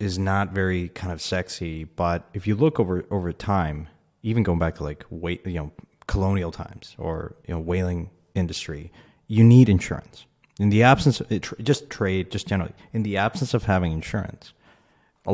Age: 30-49